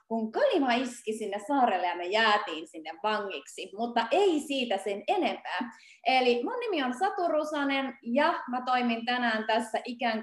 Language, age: Finnish, 30-49